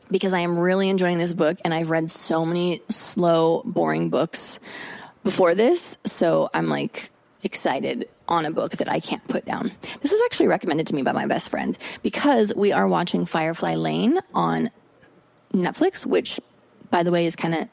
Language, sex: English, female